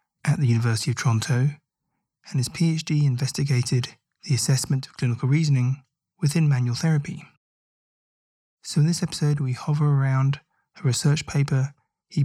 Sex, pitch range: male, 130-155 Hz